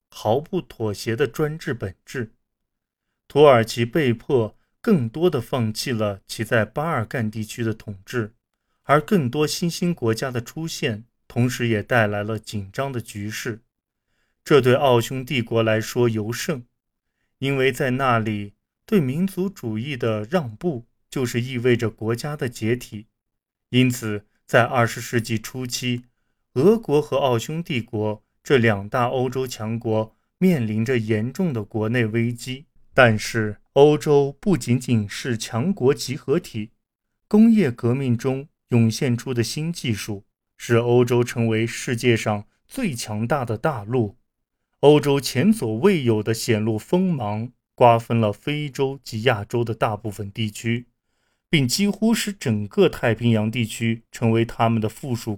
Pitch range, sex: 110-135 Hz, male